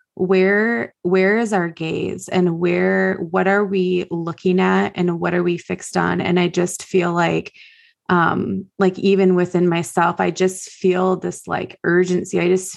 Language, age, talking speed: English, 20-39, 170 wpm